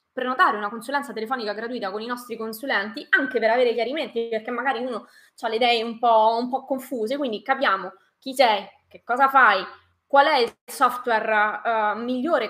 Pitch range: 225-295 Hz